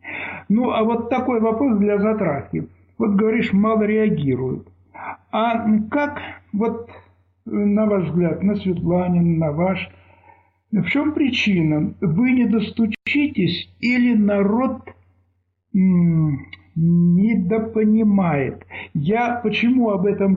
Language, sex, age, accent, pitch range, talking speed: Russian, male, 60-79, native, 175-220 Hz, 95 wpm